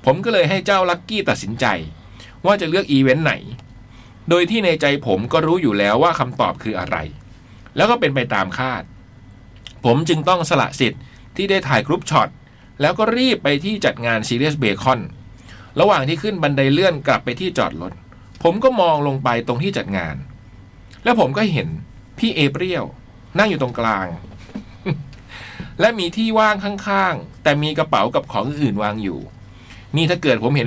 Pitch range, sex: 115-170 Hz, male